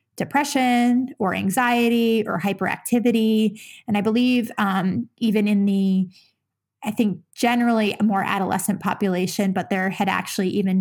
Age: 20-39